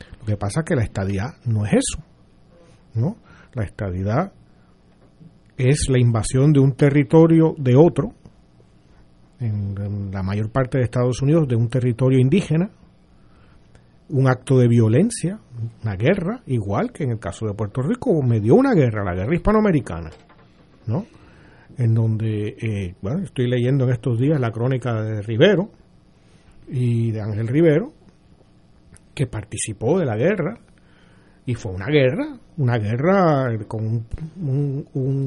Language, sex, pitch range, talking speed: Spanish, male, 110-145 Hz, 145 wpm